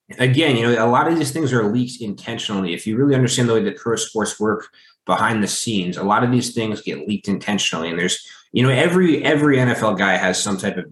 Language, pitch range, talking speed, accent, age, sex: English, 105-125 Hz, 240 wpm, American, 20-39, male